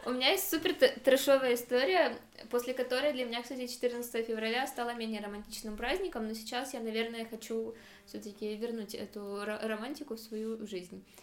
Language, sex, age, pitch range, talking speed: Russian, female, 20-39, 215-245 Hz, 155 wpm